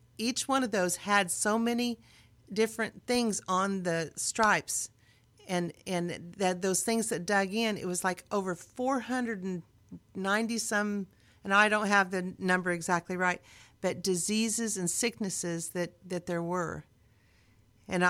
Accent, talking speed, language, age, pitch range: American, 140 wpm, English, 50-69, 160-220 Hz